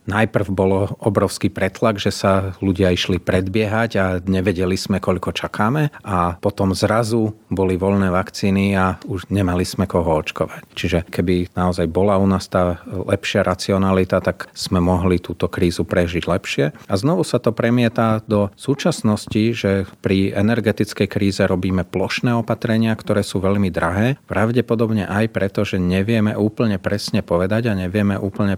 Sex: male